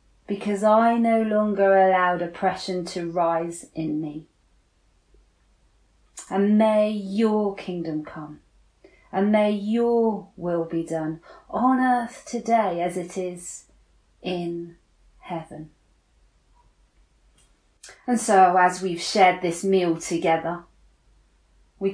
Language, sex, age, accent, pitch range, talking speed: English, female, 30-49, British, 165-220 Hz, 105 wpm